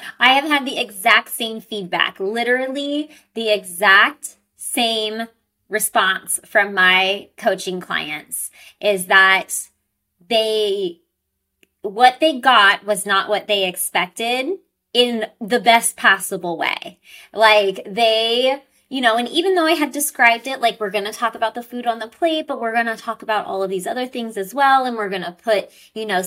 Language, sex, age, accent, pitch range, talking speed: English, female, 30-49, American, 190-240 Hz, 170 wpm